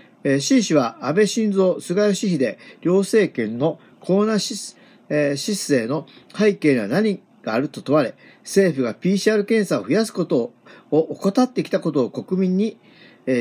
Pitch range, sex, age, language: 145-210 Hz, male, 40-59, Japanese